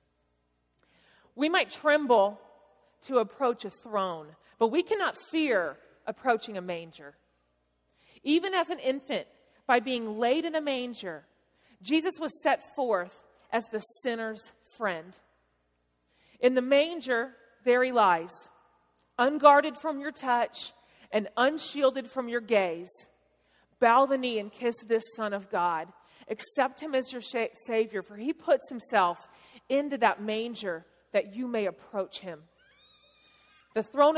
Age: 40-59